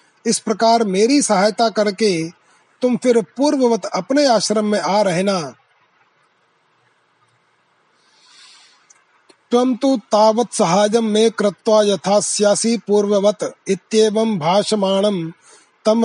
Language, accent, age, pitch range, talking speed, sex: Hindi, native, 30-49, 200-225 Hz, 80 wpm, male